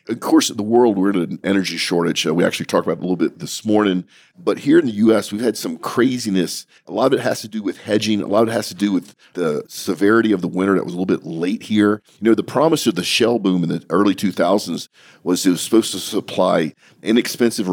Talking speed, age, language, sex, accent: 265 wpm, 40-59, English, male, American